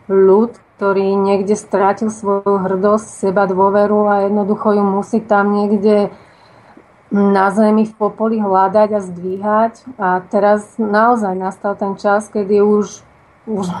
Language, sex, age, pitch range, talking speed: Slovak, female, 30-49, 190-205 Hz, 130 wpm